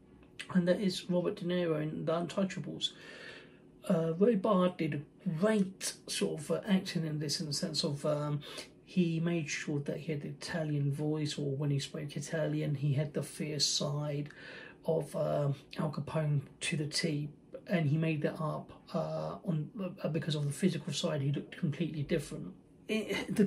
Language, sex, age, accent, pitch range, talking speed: English, male, 40-59, British, 150-175 Hz, 180 wpm